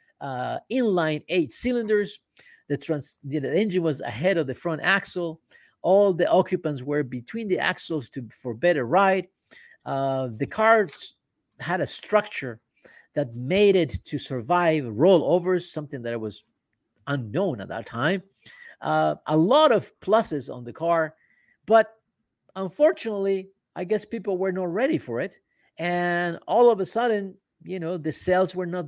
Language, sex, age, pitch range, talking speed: Spanish, male, 50-69, 140-190 Hz, 155 wpm